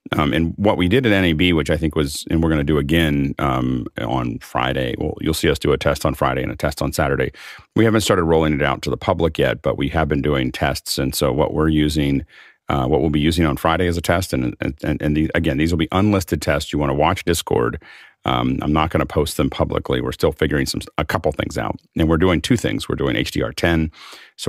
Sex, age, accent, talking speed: male, 40-59, American, 260 wpm